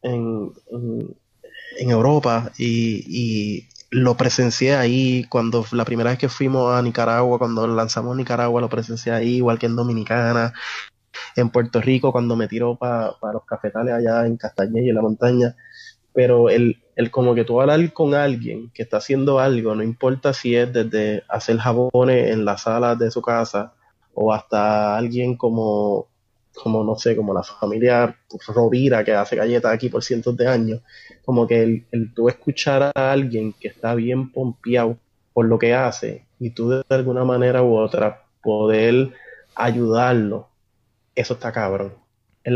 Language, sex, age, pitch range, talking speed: Spanish, male, 20-39, 115-125 Hz, 165 wpm